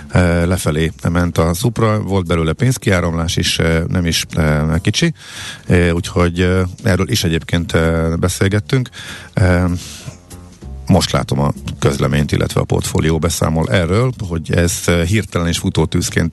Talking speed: 110 wpm